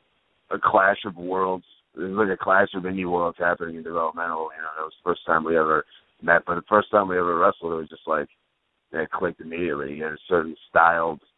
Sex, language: male, English